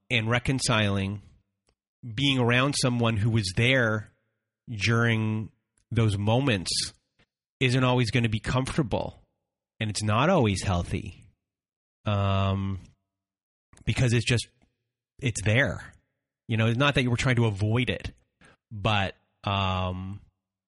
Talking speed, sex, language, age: 120 wpm, male, English, 30-49